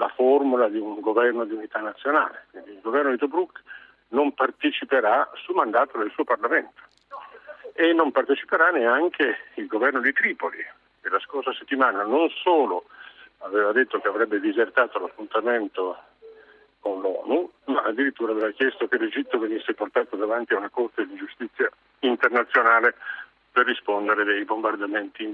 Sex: male